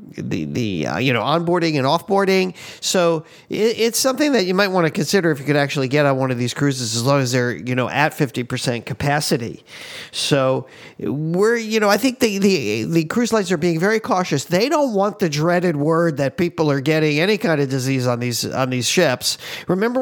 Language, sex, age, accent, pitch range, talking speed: English, male, 50-69, American, 140-185 Hz, 215 wpm